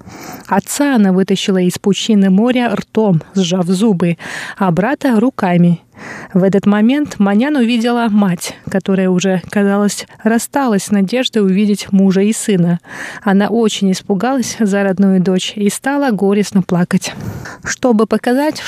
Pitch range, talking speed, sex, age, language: 190-235 Hz, 130 wpm, female, 30-49, Russian